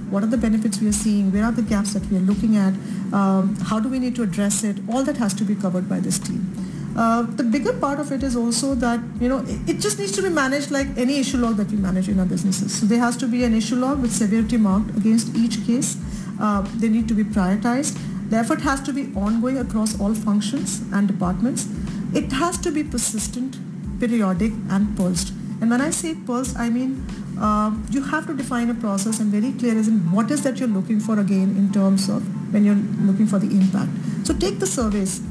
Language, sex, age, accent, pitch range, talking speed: English, female, 50-69, Indian, 200-240 Hz, 235 wpm